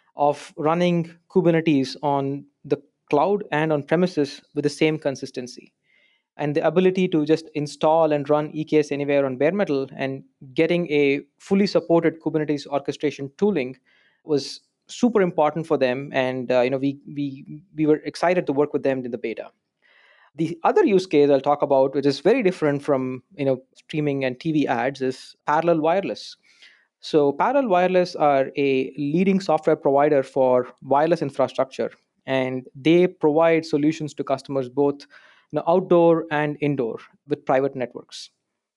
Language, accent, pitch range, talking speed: English, Indian, 140-165 Hz, 150 wpm